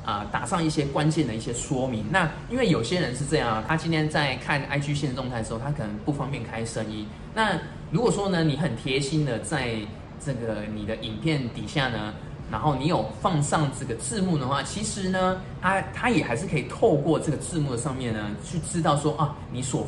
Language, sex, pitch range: Chinese, male, 115-155 Hz